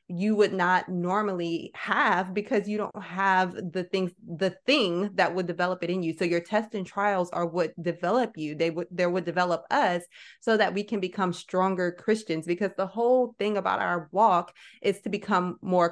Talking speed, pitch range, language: 195 wpm, 170-210 Hz, English